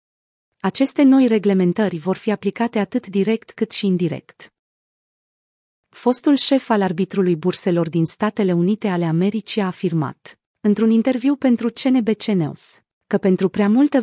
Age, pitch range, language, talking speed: 30-49, 180-230 Hz, Romanian, 135 wpm